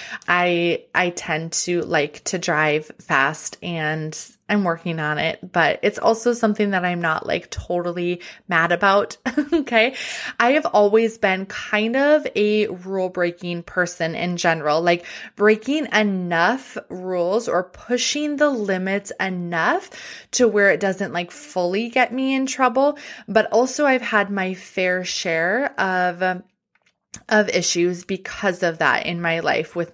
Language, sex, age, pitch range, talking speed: English, female, 20-39, 175-225 Hz, 150 wpm